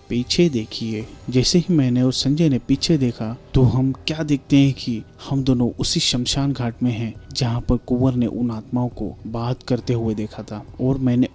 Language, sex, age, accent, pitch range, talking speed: Hindi, male, 30-49, native, 110-130 Hz, 195 wpm